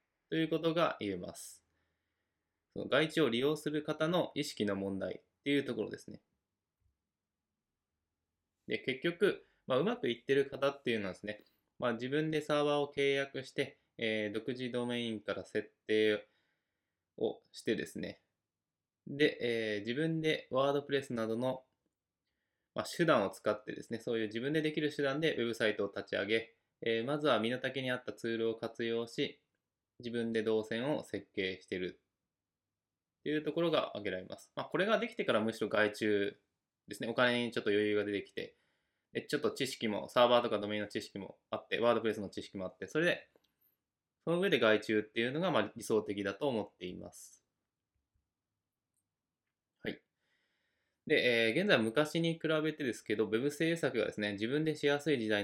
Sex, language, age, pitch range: male, Japanese, 20-39, 105-145 Hz